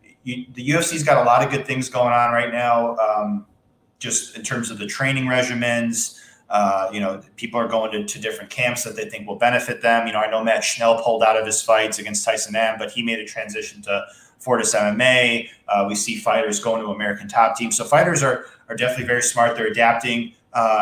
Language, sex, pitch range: English, male, 110-125 Hz